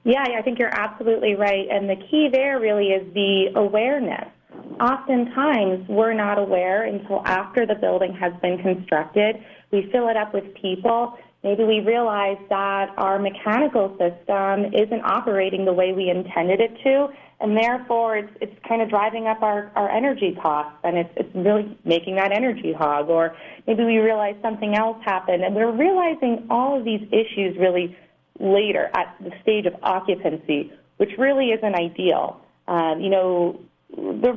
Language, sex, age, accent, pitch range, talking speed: English, female, 30-49, American, 185-230 Hz, 170 wpm